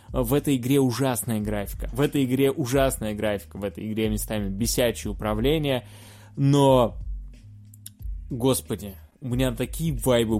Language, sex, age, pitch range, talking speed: Russian, male, 20-39, 105-135 Hz, 125 wpm